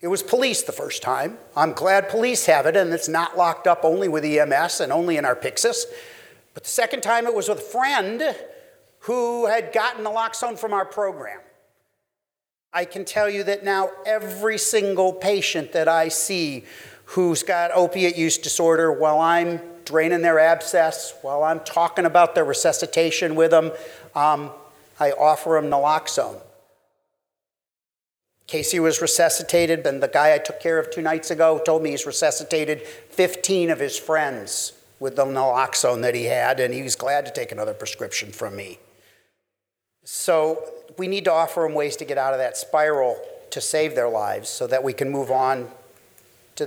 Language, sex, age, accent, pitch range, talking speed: English, male, 50-69, American, 155-215 Hz, 175 wpm